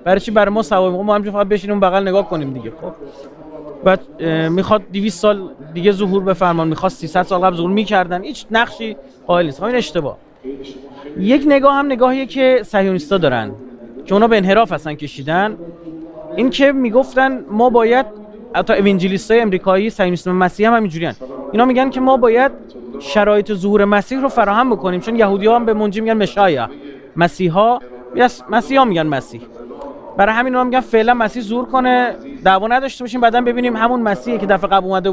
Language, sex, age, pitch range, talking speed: Persian, male, 30-49, 170-245 Hz, 175 wpm